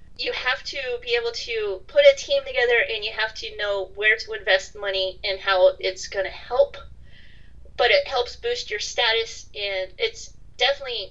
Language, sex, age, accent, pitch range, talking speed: English, female, 30-49, American, 195-280 Hz, 185 wpm